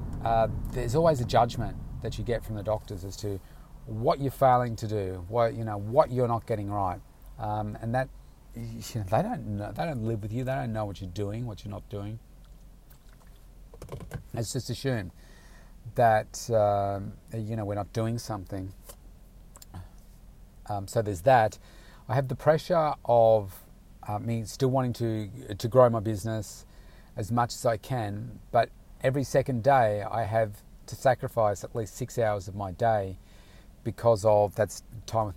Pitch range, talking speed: 105-125 Hz, 190 wpm